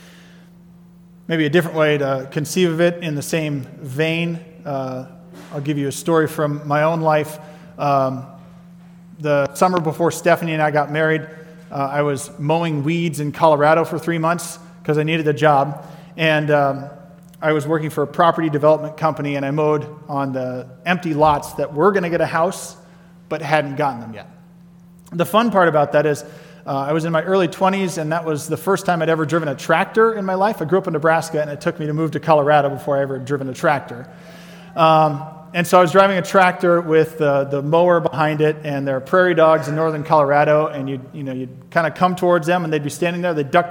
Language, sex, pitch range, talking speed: English, male, 150-175 Hz, 220 wpm